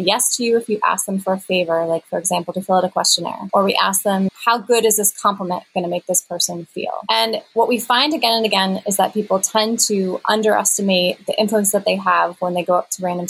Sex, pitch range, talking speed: female, 190-225 Hz, 255 wpm